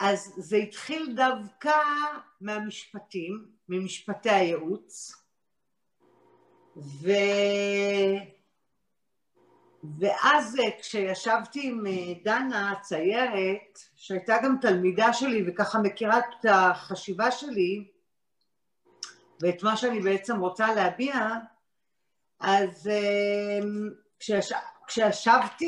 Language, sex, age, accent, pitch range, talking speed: Hebrew, female, 50-69, native, 190-250 Hz, 70 wpm